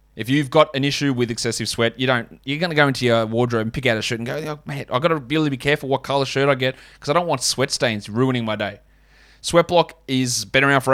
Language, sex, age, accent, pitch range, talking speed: English, male, 20-39, Australian, 125-155 Hz, 290 wpm